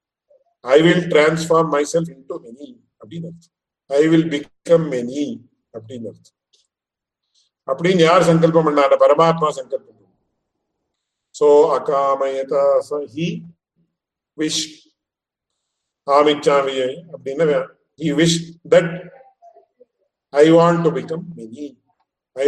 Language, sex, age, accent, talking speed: English, male, 50-69, Indian, 55 wpm